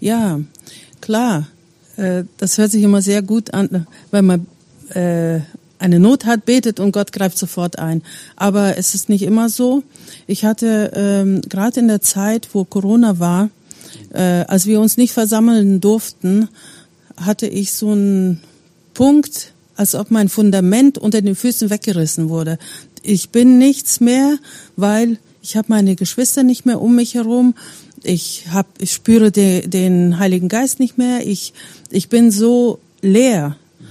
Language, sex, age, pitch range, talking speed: German, female, 50-69, 185-225 Hz, 150 wpm